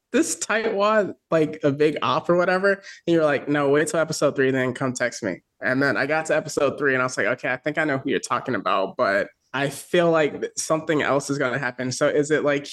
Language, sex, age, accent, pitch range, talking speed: English, male, 20-39, American, 140-170 Hz, 260 wpm